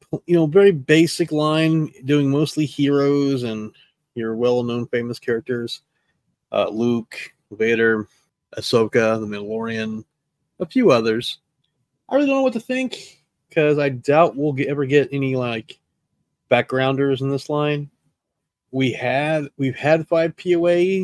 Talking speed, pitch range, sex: 135 wpm, 115-160 Hz, male